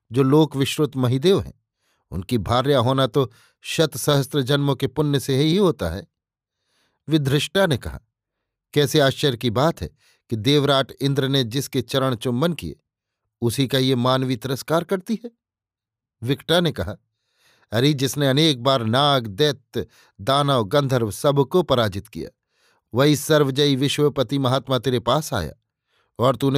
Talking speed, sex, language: 145 wpm, male, Hindi